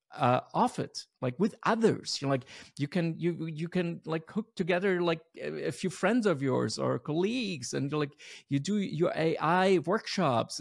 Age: 50-69